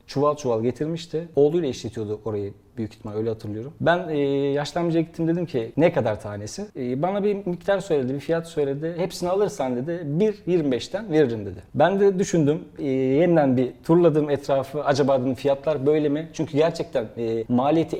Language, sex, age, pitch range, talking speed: Turkish, male, 40-59, 125-170 Hz, 165 wpm